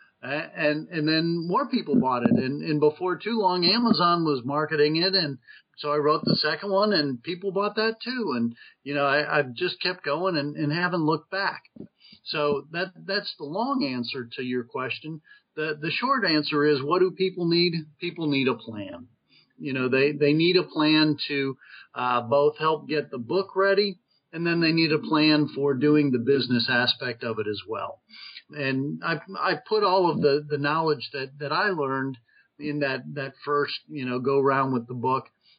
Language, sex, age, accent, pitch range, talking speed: English, male, 40-59, American, 135-180 Hz, 200 wpm